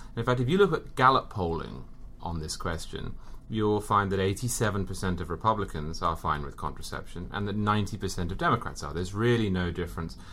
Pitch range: 85-105 Hz